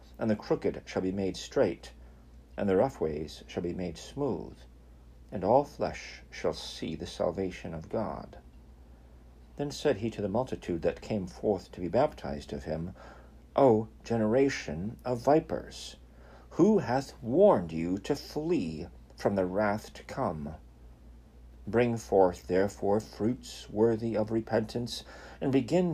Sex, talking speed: male, 145 wpm